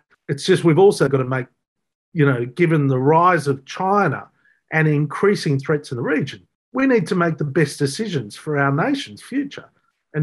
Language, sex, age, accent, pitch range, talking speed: English, male, 40-59, Australian, 135-175 Hz, 190 wpm